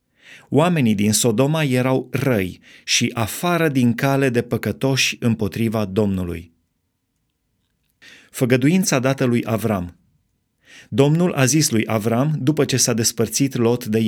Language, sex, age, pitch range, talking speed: Romanian, male, 30-49, 110-140 Hz, 120 wpm